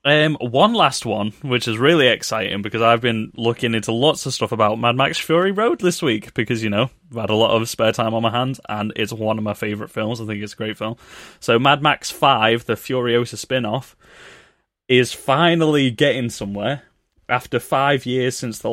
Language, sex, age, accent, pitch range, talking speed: English, male, 20-39, British, 105-130 Hz, 210 wpm